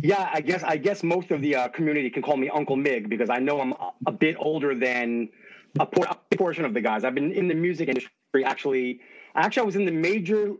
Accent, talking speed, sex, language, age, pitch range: American, 250 wpm, male, English, 30-49, 135-165 Hz